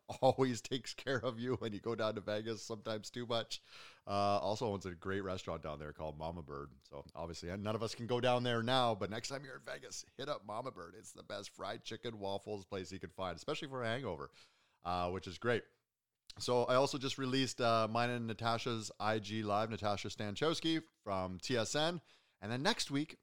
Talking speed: 210 wpm